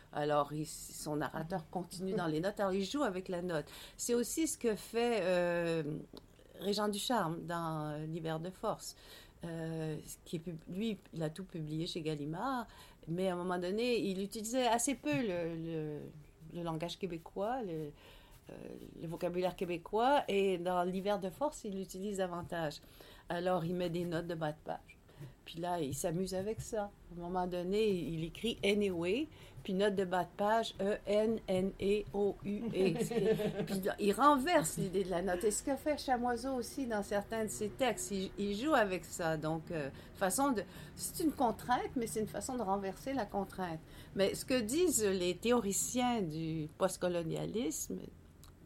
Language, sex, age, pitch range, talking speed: French, female, 60-79, 165-215 Hz, 175 wpm